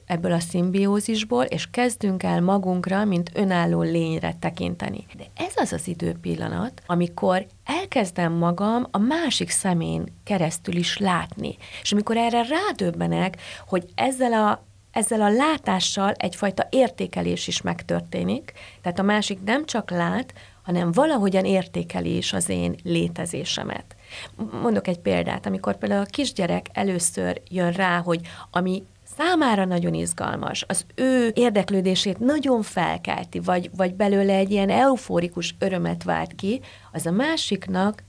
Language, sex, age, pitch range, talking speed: Hungarian, female, 30-49, 170-215 Hz, 130 wpm